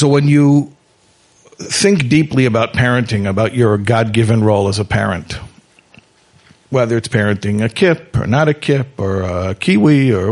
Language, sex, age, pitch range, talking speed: English, male, 50-69, 110-145 Hz, 155 wpm